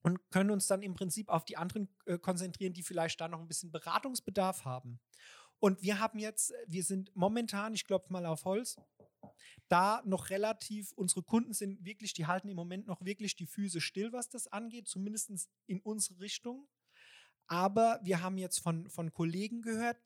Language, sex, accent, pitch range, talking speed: German, male, German, 160-200 Hz, 180 wpm